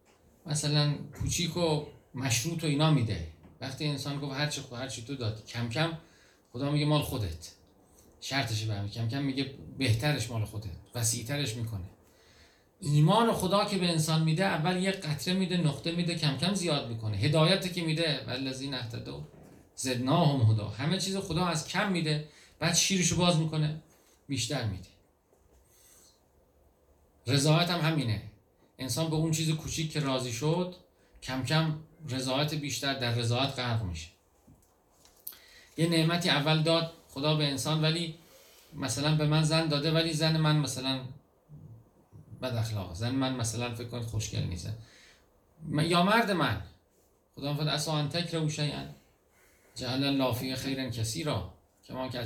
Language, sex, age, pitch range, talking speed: Persian, male, 40-59, 115-160 Hz, 150 wpm